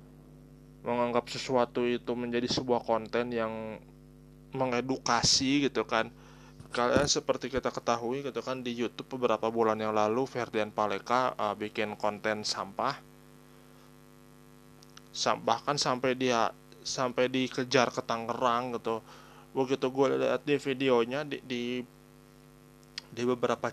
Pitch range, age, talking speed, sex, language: 115-135 Hz, 20-39, 115 wpm, male, Indonesian